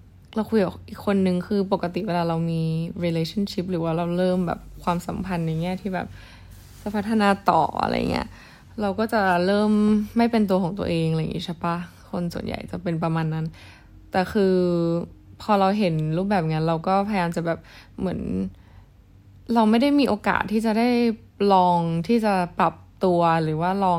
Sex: female